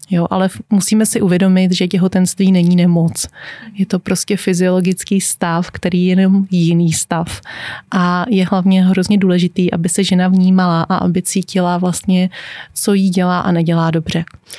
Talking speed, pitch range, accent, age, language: 150 wpm, 185-205 Hz, native, 30-49, Czech